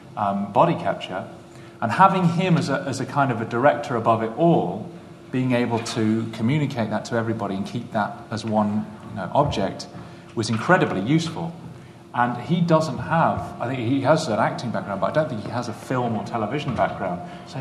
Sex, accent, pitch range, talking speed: male, British, 110-150 Hz, 200 wpm